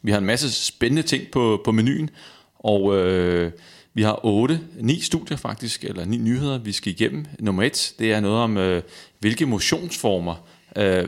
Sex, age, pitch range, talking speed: male, 30-49, 95-125 Hz, 180 wpm